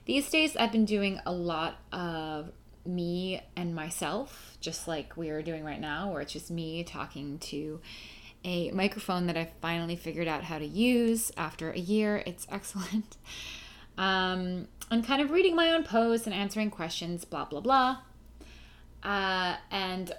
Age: 20-39